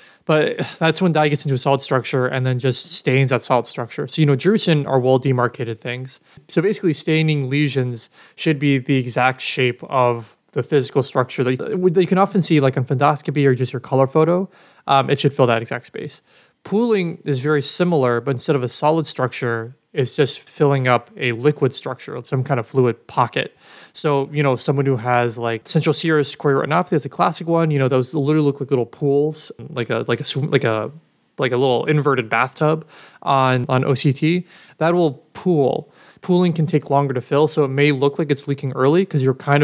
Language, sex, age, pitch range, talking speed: English, male, 20-39, 130-155 Hz, 205 wpm